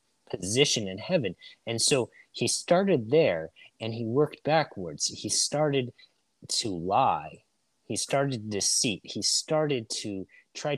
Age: 30-49